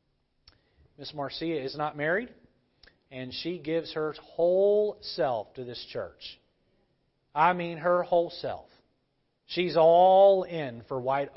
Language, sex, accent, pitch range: English, male, American, 135-175 Hz